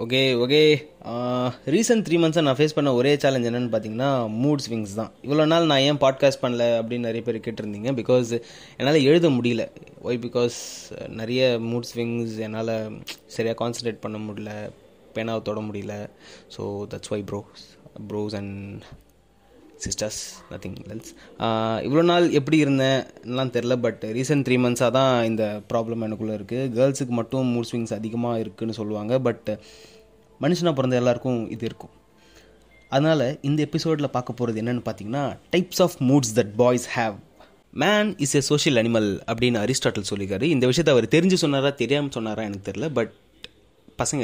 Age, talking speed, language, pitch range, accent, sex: 20-39, 150 wpm, Tamil, 110-140 Hz, native, male